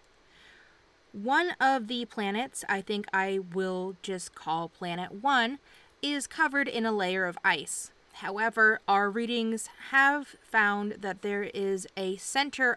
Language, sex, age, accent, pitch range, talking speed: English, female, 20-39, American, 195-260 Hz, 135 wpm